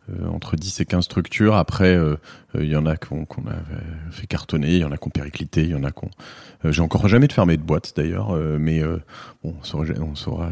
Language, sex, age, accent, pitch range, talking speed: French, male, 30-49, French, 75-95 Hz, 270 wpm